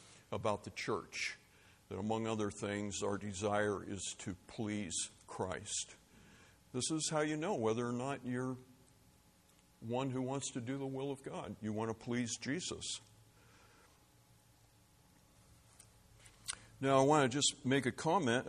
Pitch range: 100-135 Hz